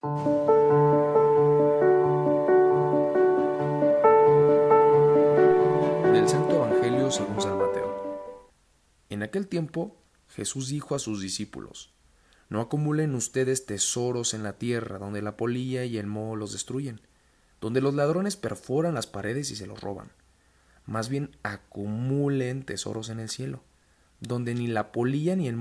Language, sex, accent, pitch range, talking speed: Spanish, male, Mexican, 95-140 Hz, 120 wpm